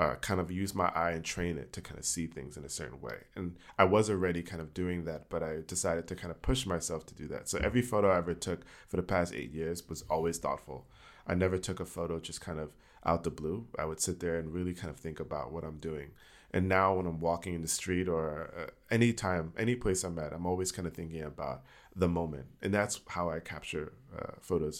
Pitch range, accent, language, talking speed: 80-95 Hz, American, Danish, 255 wpm